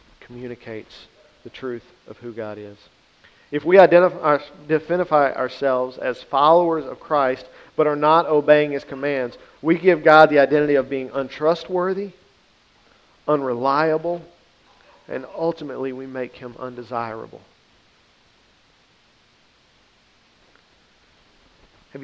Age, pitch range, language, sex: 50-69, 125-160 Hz, English, male